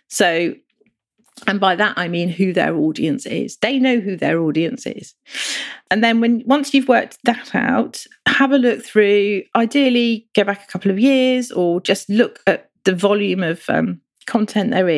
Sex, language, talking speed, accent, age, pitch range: female, English, 180 wpm, British, 40-59, 190-245 Hz